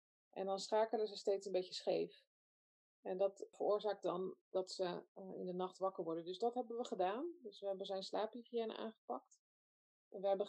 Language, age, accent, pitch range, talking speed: Dutch, 20-39, Dutch, 190-225 Hz, 190 wpm